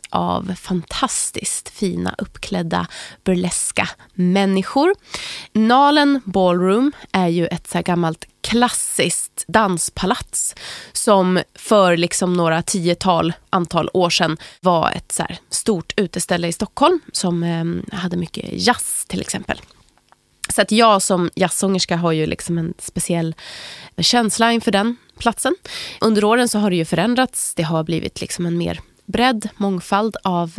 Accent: native